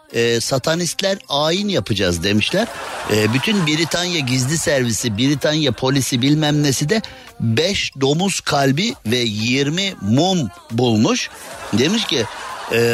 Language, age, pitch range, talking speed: Turkish, 50-69, 115-160 Hz, 115 wpm